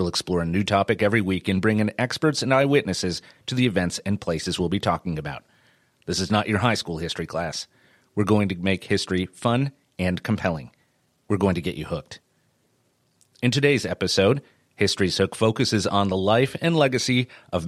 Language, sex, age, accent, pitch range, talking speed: English, male, 30-49, American, 95-120 Hz, 190 wpm